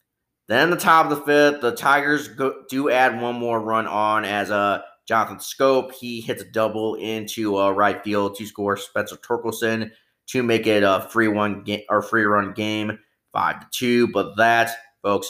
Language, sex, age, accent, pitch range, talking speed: English, male, 20-39, American, 105-120 Hz, 195 wpm